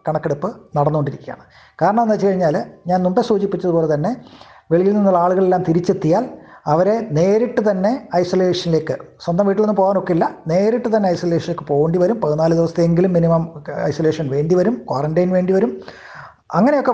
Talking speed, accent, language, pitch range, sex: 125 wpm, native, Malayalam, 165-210 Hz, male